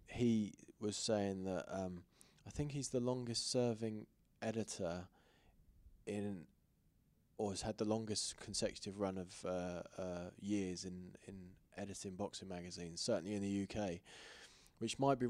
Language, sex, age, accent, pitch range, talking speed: English, male, 20-39, British, 100-115 Hz, 140 wpm